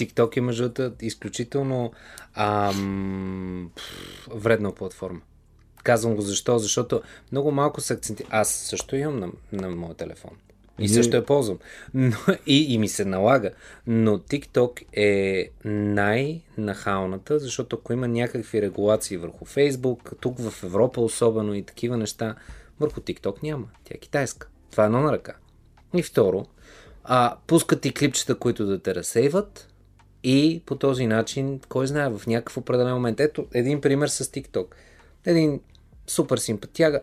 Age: 20-39